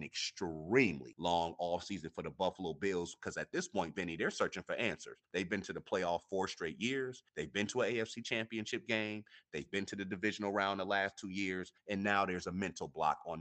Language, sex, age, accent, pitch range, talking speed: English, male, 30-49, American, 90-110 Hz, 225 wpm